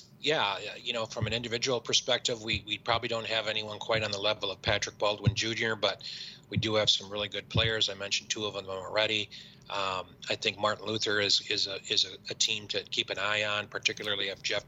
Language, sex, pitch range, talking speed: English, male, 100-110 Hz, 225 wpm